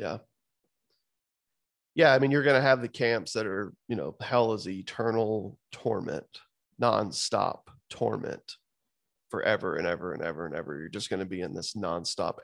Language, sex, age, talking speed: English, male, 30-49, 170 wpm